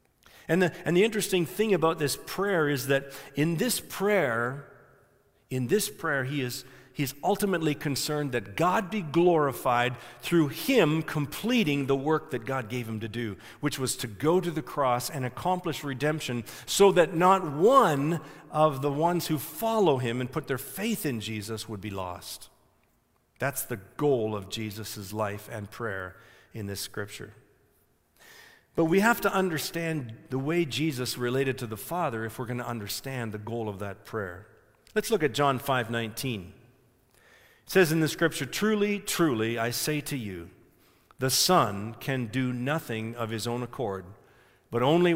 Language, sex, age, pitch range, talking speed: English, male, 50-69, 115-160 Hz, 165 wpm